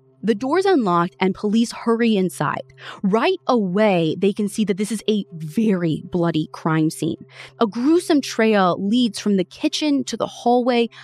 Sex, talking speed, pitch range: female, 165 wpm, 170-245 Hz